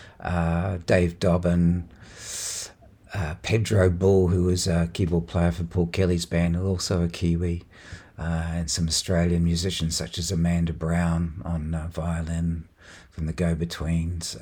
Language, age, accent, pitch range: English, 50-69, Australian, 85-110 Hz